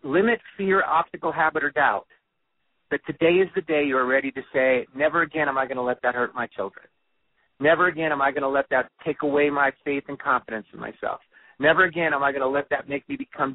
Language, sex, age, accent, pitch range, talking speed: English, male, 40-59, American, 135-170 Hz, 235 wpm